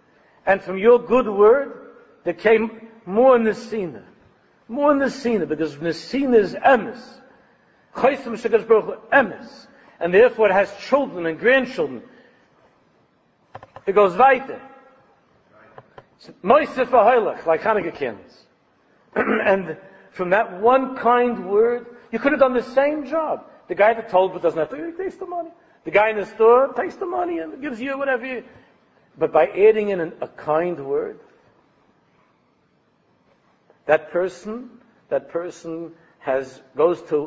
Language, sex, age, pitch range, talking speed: English, male, 60-79, 160-255 Hz, 140 wpm